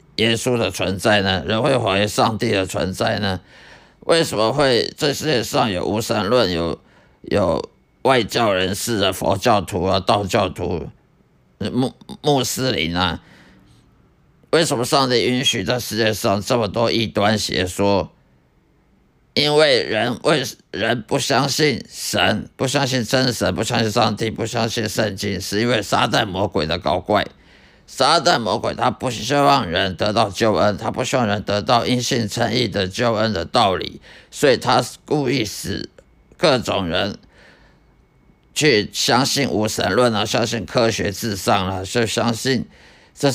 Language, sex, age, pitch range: Chinese, male, 50-69, 100-125 Hz